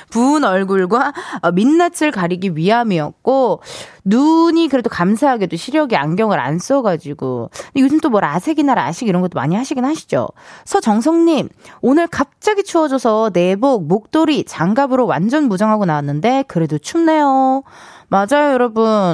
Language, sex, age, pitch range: Korean, female, 20-39, 180-290 Hz